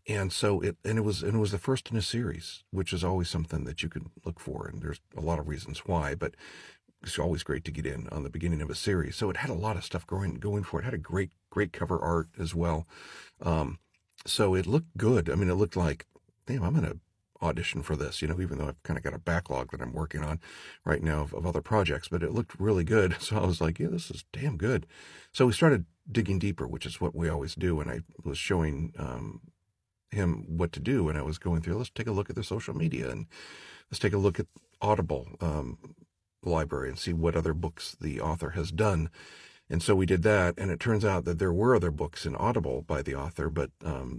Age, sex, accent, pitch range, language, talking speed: 50-69, male, American, 80-95 Hz, English, 250 wpm